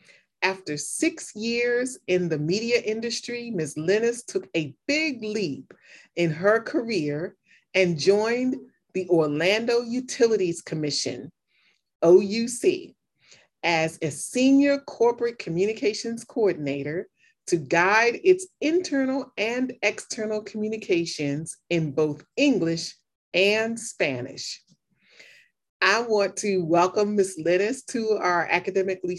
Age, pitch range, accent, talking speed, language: 30-49, 175-235 Hz, American, 105 wpm, English